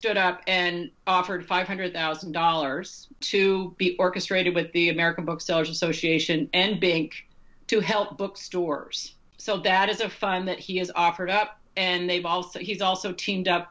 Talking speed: 155 wpm